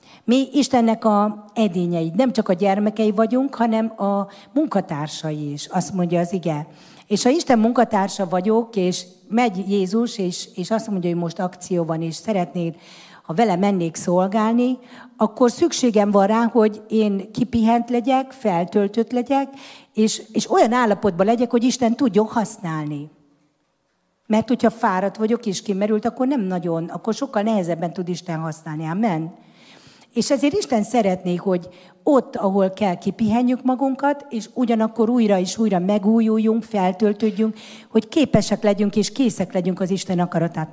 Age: 50-69